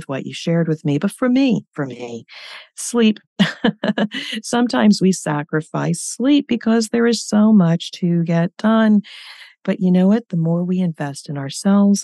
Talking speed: 165 wpm